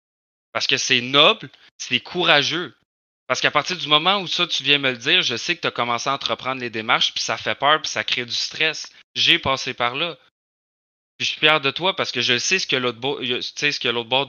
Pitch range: 120-145 Hz